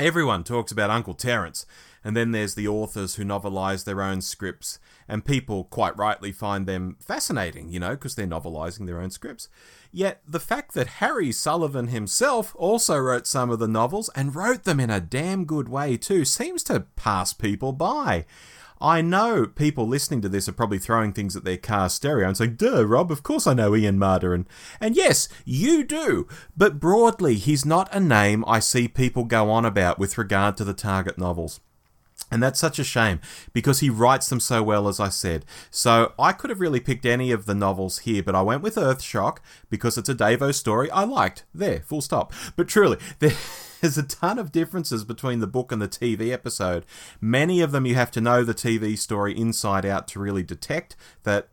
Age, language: 30-49, English